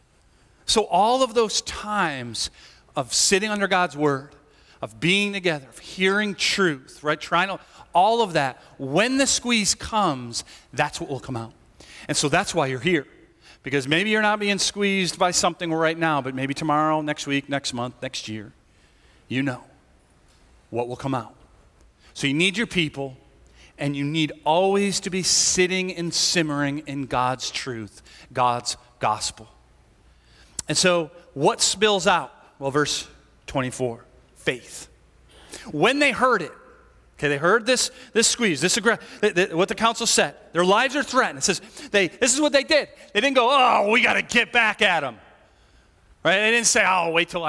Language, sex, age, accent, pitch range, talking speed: English, male, 40-59, American, 135-215 Hz, 175 wpm